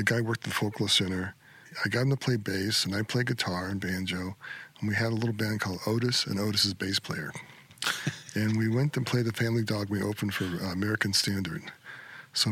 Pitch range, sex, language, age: 100-120 Hz, male, English, 40-59